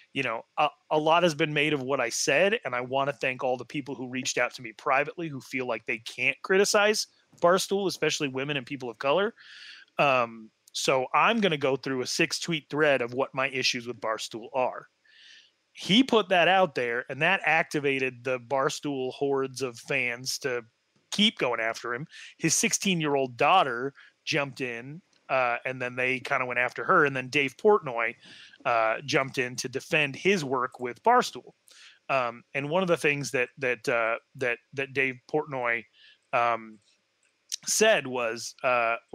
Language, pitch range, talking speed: English, 130-175 Hz, 180 wpm